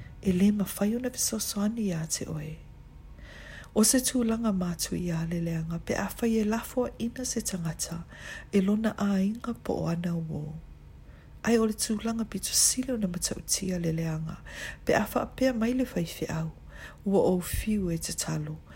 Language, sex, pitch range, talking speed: English, female, 165-215 Hz, 125 wpm